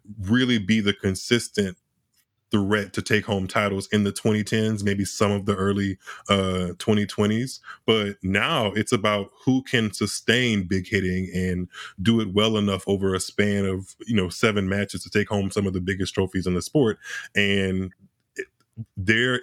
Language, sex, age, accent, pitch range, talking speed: English, male, 20-39, American, 95-110 Hz, 165 wpm